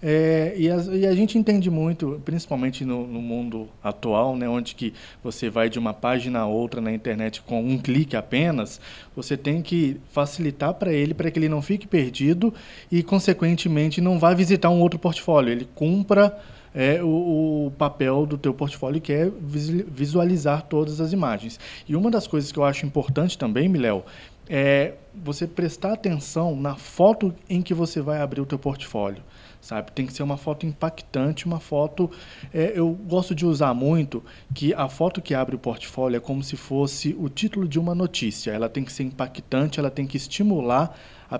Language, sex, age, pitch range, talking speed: Portuguese, male, 20-39, 130-170 Hz, 190 wpm